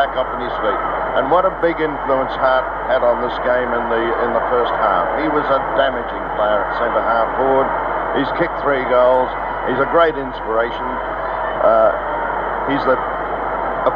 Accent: Australian